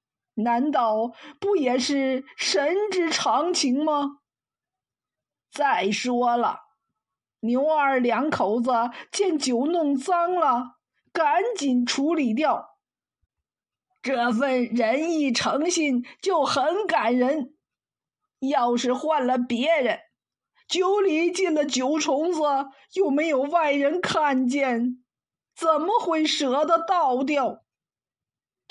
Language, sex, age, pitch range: Chinese, female, 50-69, 245-320 Hz